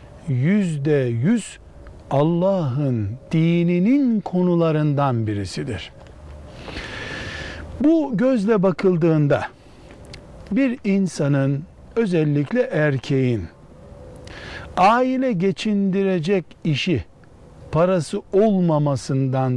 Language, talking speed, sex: Turkish, 55 wpm, male